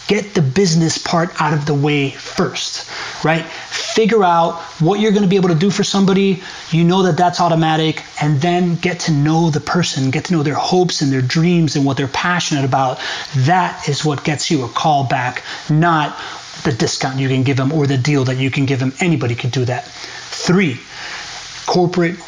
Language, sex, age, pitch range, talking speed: English, male, 30-49, 135-170 Hz, 200 wpm